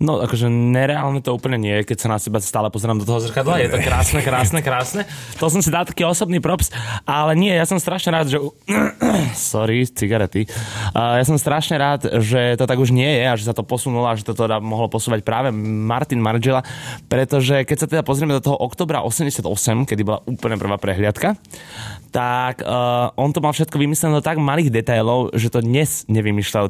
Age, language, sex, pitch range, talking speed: 20-39, Slovak, male, 115-140 Hz, 205 wpm